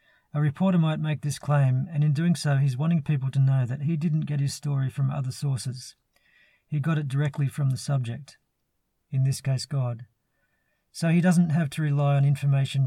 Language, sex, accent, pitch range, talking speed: English, male, Australian, 135-150 Hz, 200 wpm